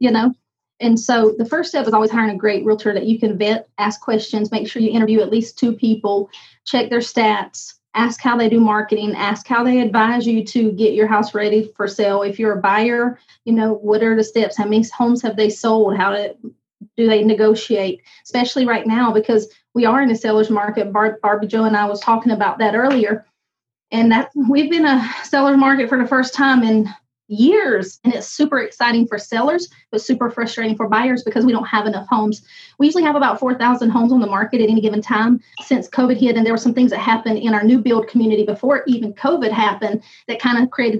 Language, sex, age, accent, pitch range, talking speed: English, female, 30-49, American, 215-245 Hz, 225 wpm